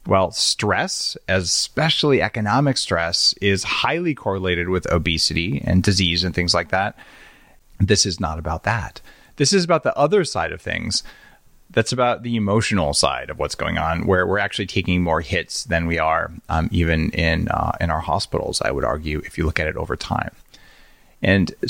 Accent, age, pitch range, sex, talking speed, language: American, 30-49, 90-125 Hz, male, 180 wpm, English